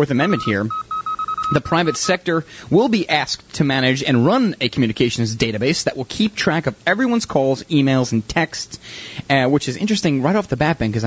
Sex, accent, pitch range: male, American, 125-180 Hz